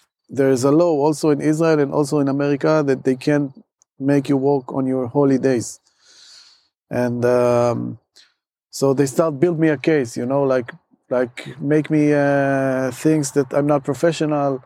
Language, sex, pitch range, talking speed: English, male, 130-160 Hz, 170 wpm